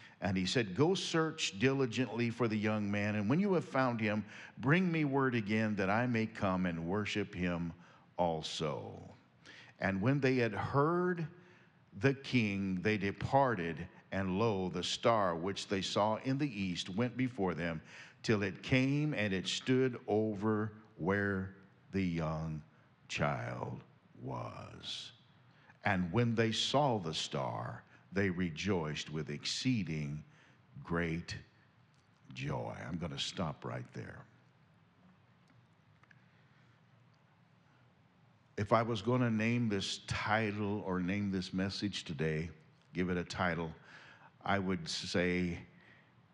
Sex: male